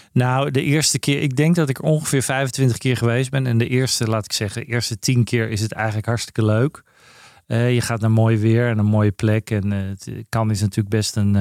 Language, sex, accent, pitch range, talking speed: Dutch, male, Dutch, 110-130 Hz, 235 wpm